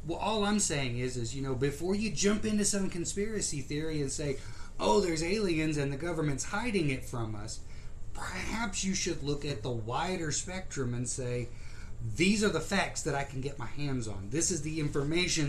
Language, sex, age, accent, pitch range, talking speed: English, male, 30-49, American, 120-185 Hz, 200 wpm